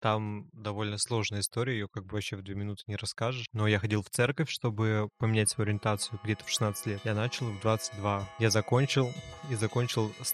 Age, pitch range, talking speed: 20-39, 105-120 Hz, 205 wpm